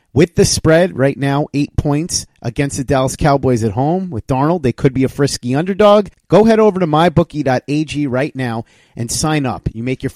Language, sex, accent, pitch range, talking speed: English, male, American, 125-160 Hz, 200 wpm